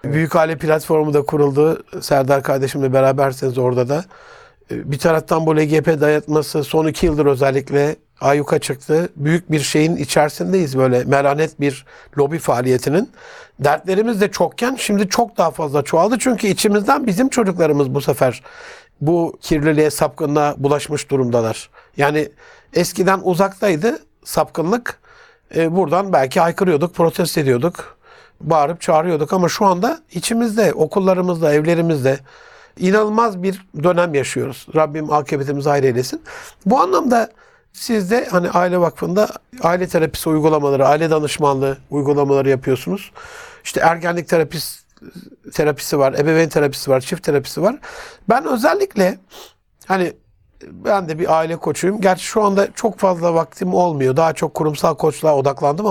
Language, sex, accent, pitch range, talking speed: Turkish, male, native, 145-195 Hz, 130 wpm